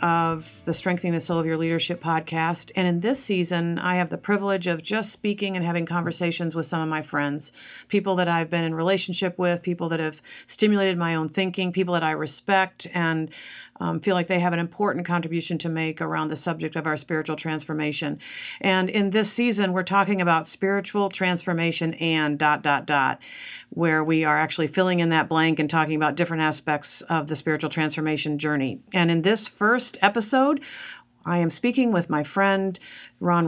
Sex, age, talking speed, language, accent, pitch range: female, 50-69, 190 wpm, English, American, 160-190 Hz